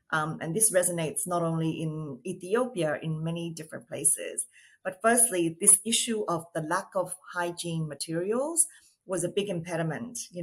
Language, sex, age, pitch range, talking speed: English, female, 30-49, 160-195 Hz, 155 wpm